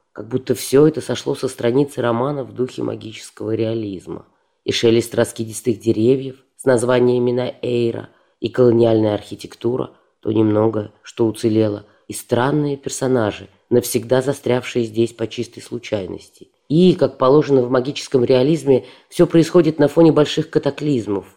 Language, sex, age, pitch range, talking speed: Russian, female, 20-39, 110-140 Hz, 135 wpm